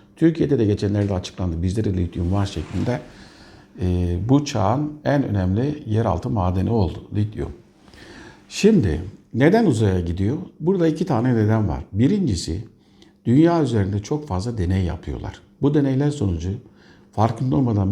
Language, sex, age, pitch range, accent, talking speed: Turkish, male, 60-79, 95-125 Hz, native, 125 wpm